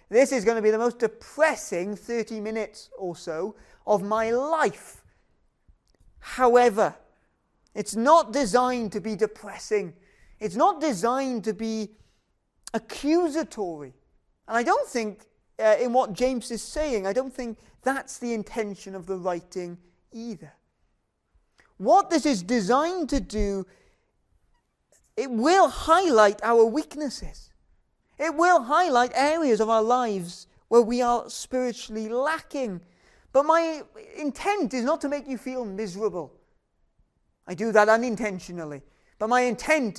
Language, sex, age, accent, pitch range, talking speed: English, male, 30-49, British, 200-270 Hz, 130 wpm